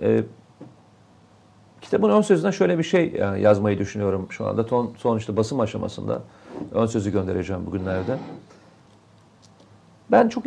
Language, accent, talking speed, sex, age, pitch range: Turkish, native, 130 wpm, male, 40-59, 105-135 Hz